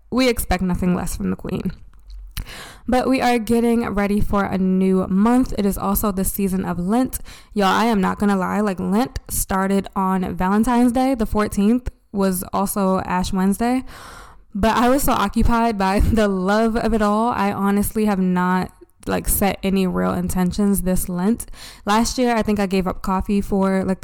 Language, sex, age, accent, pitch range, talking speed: English, female, 20-39, American, 185-210 Hz, 185 wpm